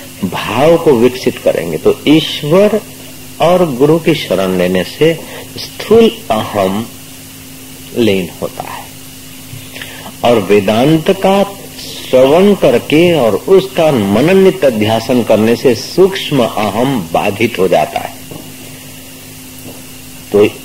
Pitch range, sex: 110-170 Hz, male